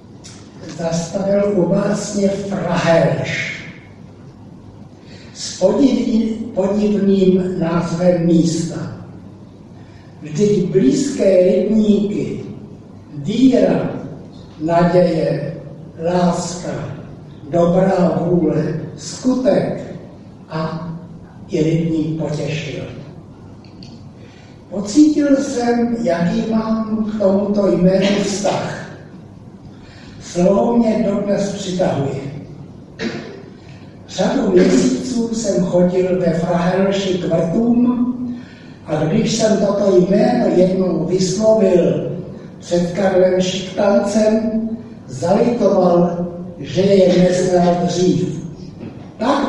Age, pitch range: 60-79, 160-200 Hz